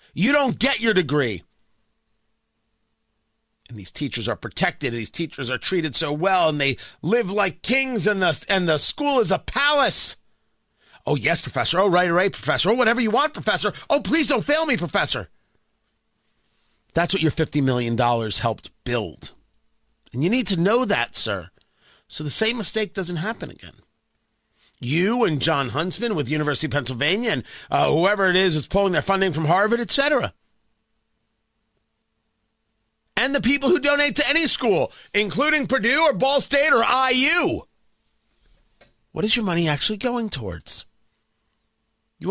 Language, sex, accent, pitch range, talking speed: English, male, American, 145-225 Hz, 155 wpm